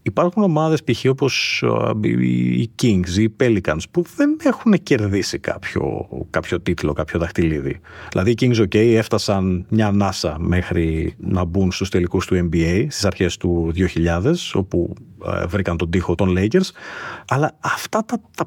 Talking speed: 155 wpm